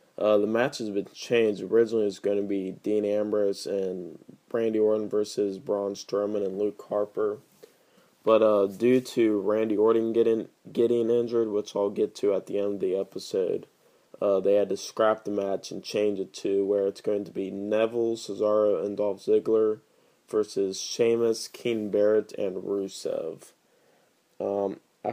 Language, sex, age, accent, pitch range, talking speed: English, male, 20-39, American, 100-115 Hz, 165 wpm